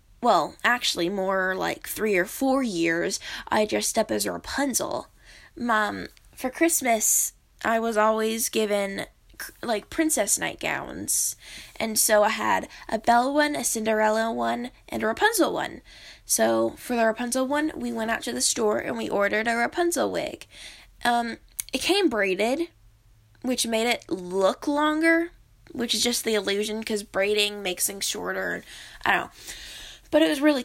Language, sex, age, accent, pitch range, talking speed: English, female, 10-29, American, 215-290 Hz, 160 wpm